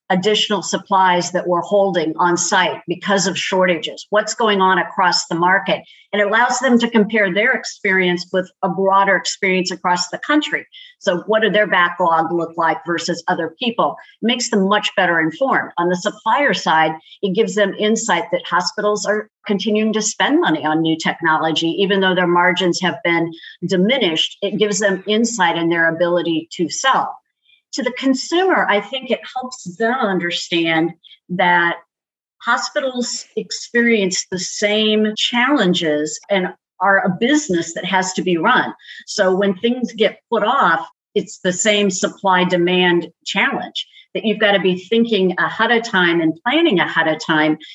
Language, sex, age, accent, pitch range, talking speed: English, female, 50-69, American, 175-215 Hz, 165 wpm